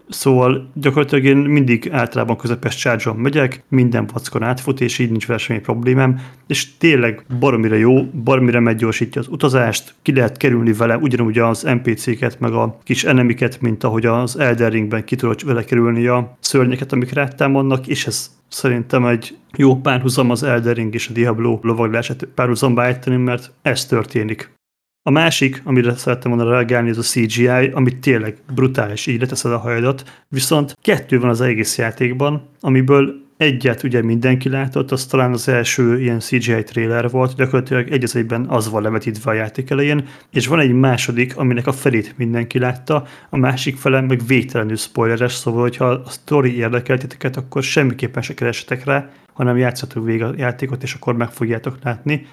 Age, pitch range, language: 30-49, 115-135 Hz, Hungarian